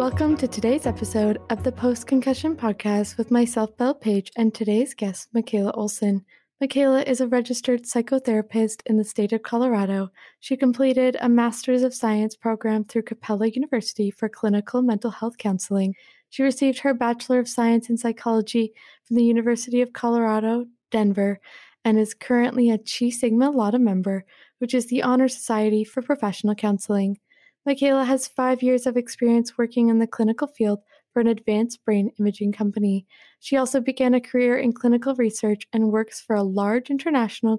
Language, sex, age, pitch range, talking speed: English, female, 20-39, 215-250 Hz, 165 wpm